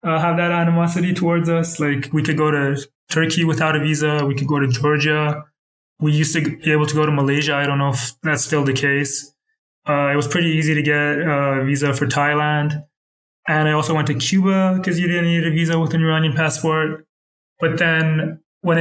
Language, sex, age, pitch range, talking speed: English, male, 20-39, 140-170 Hz, 215 wpm